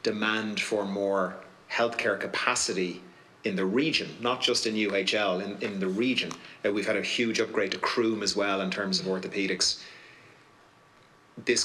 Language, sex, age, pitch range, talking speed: English, male, 30-49, 95-110 Hz, 160 wpm